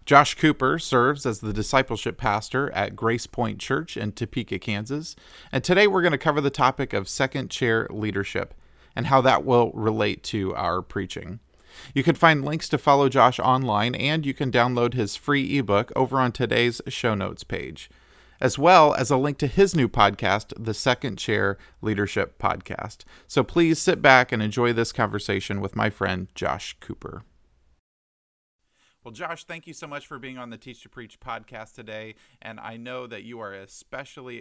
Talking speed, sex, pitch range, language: 180 wpm, male, 105-135 Hz, English